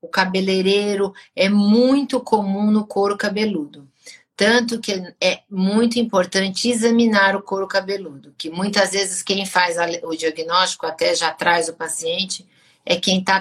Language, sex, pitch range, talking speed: Portuguese, female, 170-205 Hz, 145 wpm